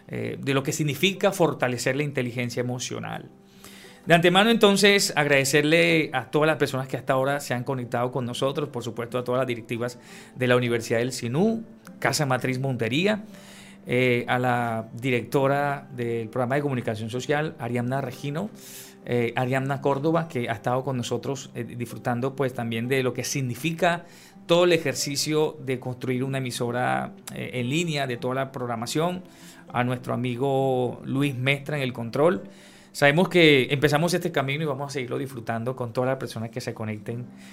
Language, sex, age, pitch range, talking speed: English, male, 40-59, 120-155 Hz, 170 wpm